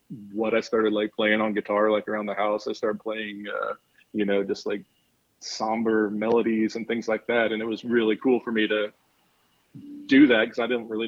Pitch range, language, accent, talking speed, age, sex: 105-115 Hz, English, American, 210 wpm, 30-49, male